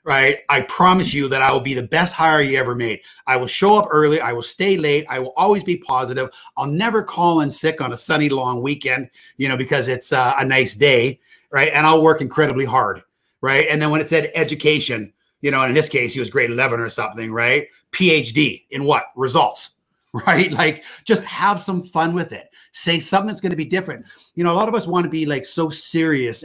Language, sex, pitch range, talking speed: English, male, 130-160 Hz, 230 wpm